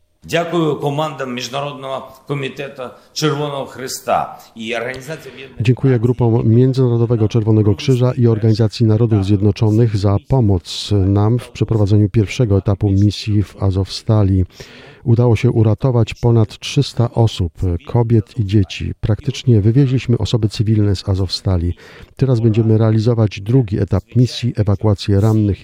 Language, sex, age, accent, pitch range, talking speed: Polish, male, 50-69, native, 100-120 Hz, 100 wpm